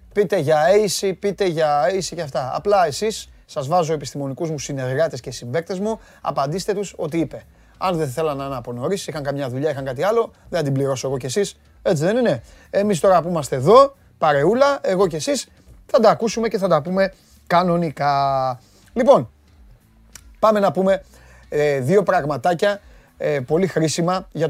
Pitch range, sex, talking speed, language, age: 145-205 Hz, male, 170 wpm, Greek, 30-49